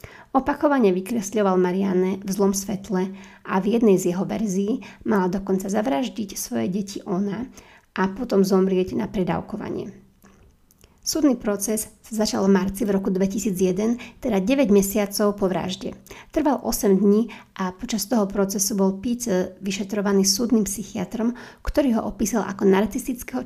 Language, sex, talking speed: Slovak, female, 140 wpm